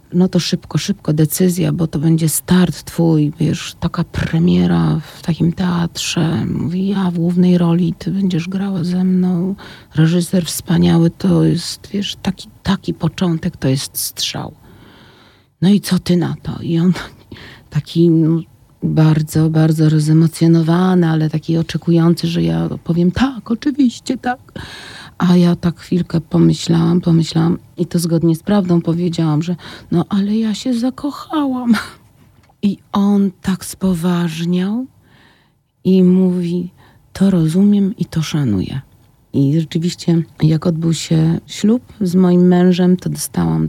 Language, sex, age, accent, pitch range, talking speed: Polish, female, 40-59, native, 155-180 Hz, 135 wpm